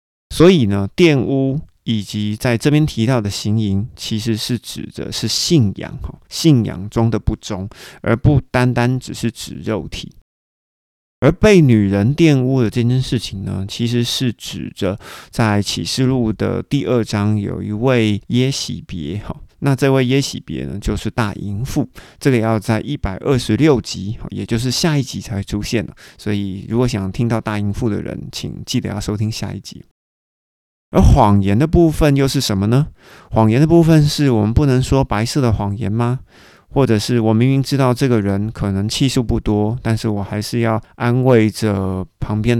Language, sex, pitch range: Chinese, male, 105-130 Hz